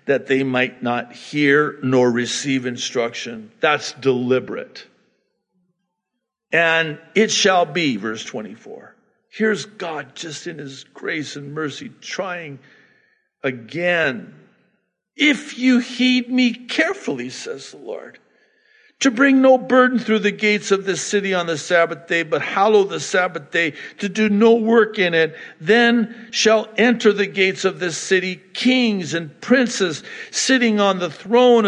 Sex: male